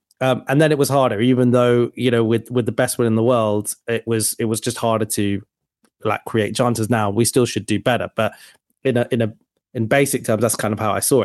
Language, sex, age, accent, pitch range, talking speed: English, male, 30-49, British, 115-140 Hz, 255 wpm